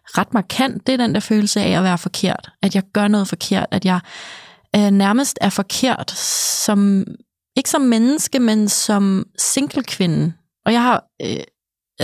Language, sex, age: Danish, female, 20-39